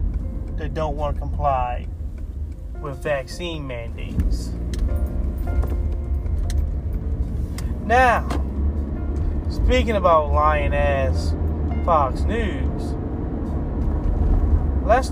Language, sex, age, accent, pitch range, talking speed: English, male, 30-49, American, 75-80 Hz, 65 wpm